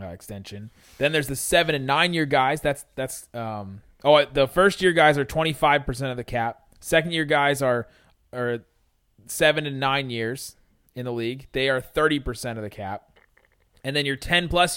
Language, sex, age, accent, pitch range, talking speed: English, male, 20-39, American, 120-150 Hz, 185 wpm